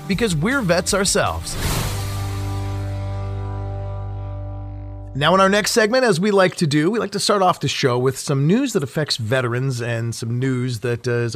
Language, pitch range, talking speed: English, 120-190 Hz, 175 wpm